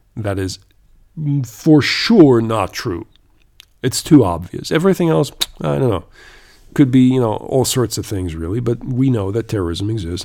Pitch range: 105-130 Hz